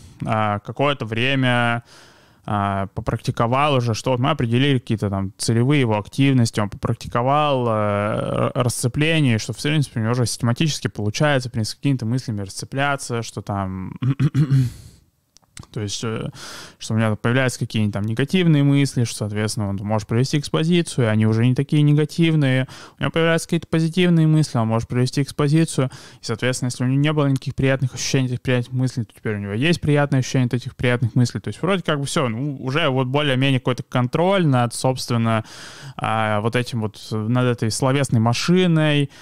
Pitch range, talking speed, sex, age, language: 115-140 Hz, 170 wpm, male, 20-39, Russian